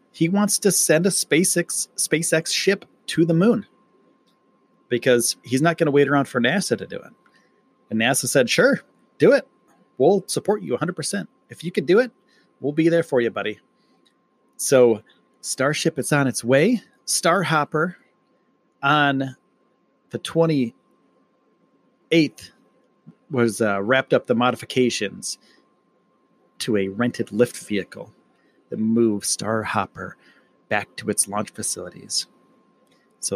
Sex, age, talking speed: male, 30-49, 135 wpm